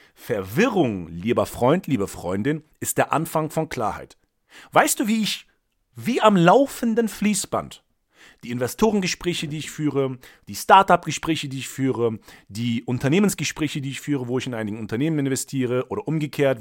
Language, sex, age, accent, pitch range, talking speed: German, male, 40-59, German, 125-195 Hz, 150 wpm